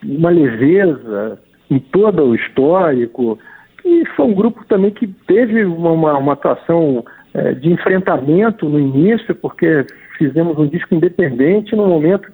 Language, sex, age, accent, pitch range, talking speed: Portuguese, male, 60-79, Brazilian, 145-195 Hz, 135 wpm